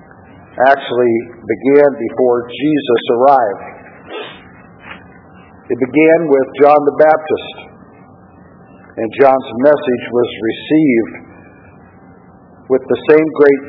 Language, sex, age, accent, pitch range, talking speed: English, male, 50-69, American, 125-150 Hz, 90 wpm